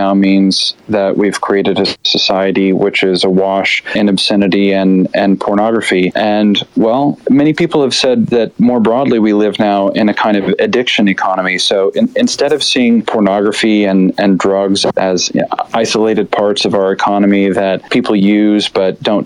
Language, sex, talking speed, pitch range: English, male, 175 wpm, 100-115 Hz